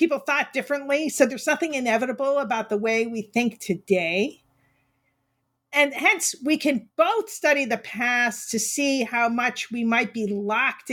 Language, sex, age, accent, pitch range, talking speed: English, female, 50-69, American, 200-270 Hz, 160 wpm